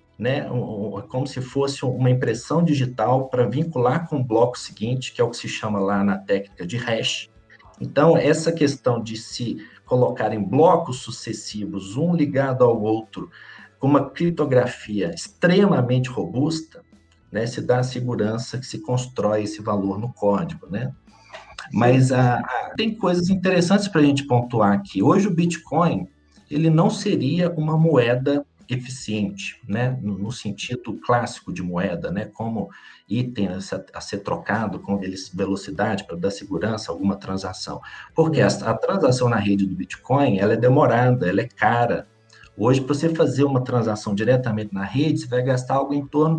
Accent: Brazilian